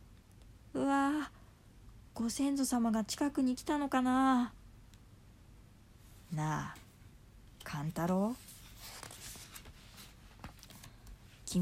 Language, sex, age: Japanese, female, 20-39